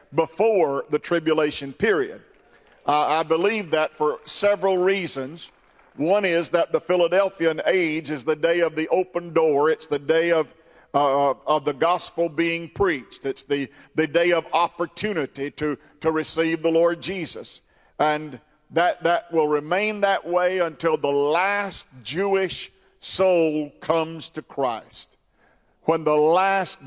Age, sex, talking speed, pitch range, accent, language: 50-69, male, 145 wpm, 150-190 Hz, American, English